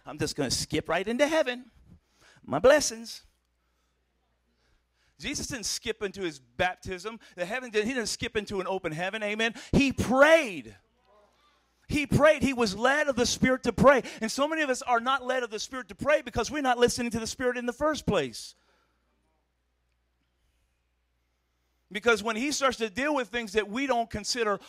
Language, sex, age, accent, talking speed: English, male, 40-59, American, 180 wpm